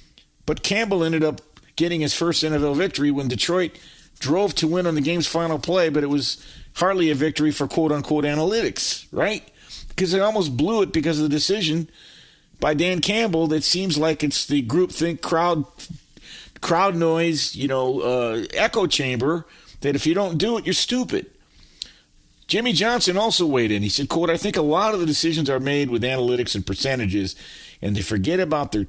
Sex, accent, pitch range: male, American, 130-170 Hz